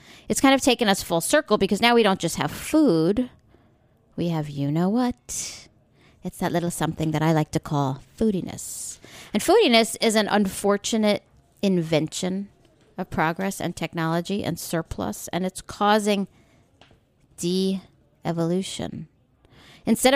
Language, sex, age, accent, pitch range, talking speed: English, female, 50-69, American, 165-215 Hz, 130 wpm